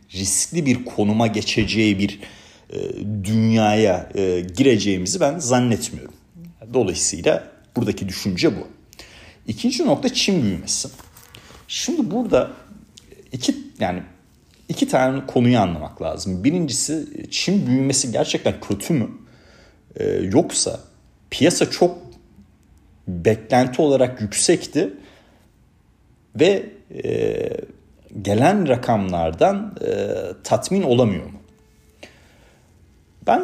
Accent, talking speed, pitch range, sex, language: native, 90 wpm, 95-160 Hz, male, Turkish